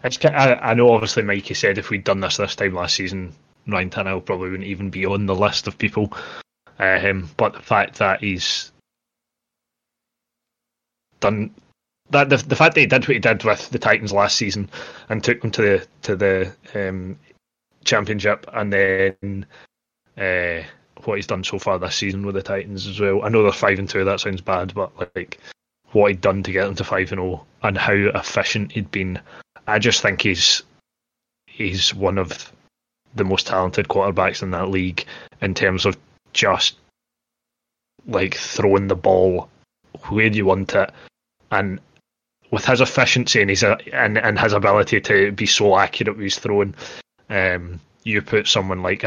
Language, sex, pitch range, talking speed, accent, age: English, male, 95-105 Hz, 175 wpm, British, 20-39